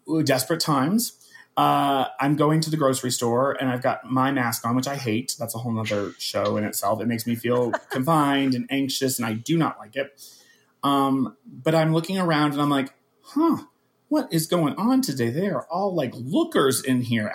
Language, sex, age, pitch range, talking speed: English, male, 30-49, 125-180 Hz, 200 wpm